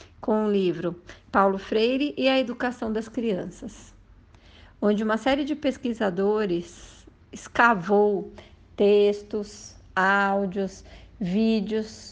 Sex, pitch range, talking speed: female, 185-230 Hz, 95 wpm